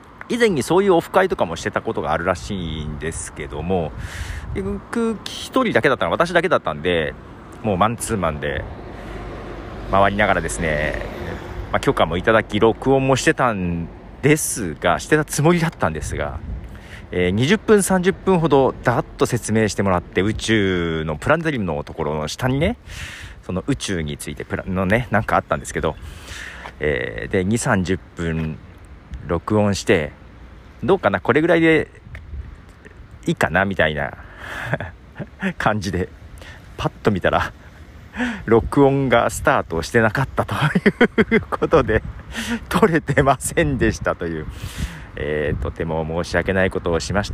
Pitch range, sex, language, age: 85-130 Hz, male, Japanese, 40-59